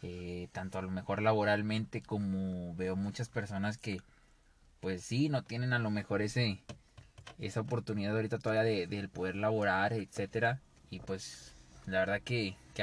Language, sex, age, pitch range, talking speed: Spanish, male, 20-39, 100-120 Hz, 160 wpm